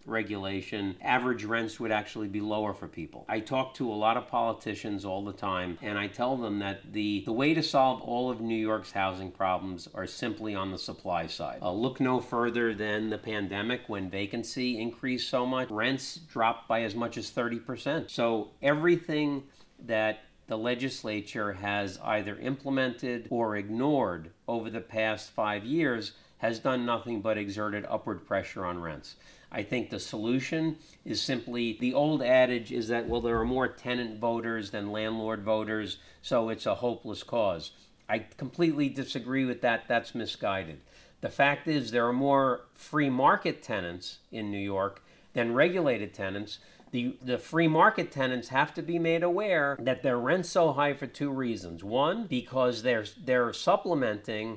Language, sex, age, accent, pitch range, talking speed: English, male, 40-59, American, 105-130 Hz, 170 wpm